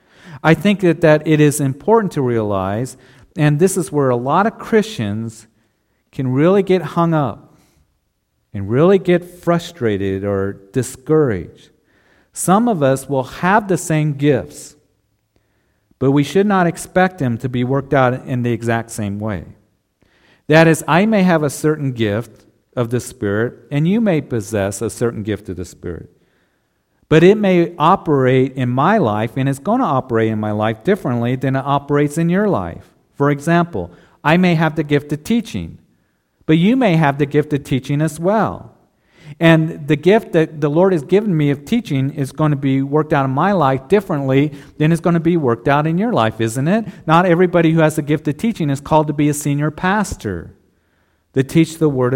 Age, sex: 50-69, male